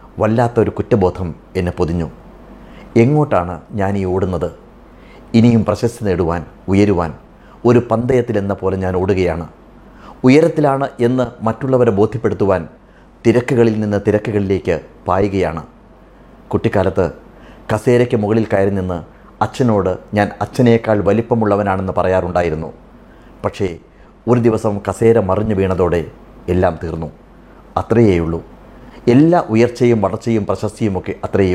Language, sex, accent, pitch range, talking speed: Malayalam, male, native, 95-120 Hz, 95 wpm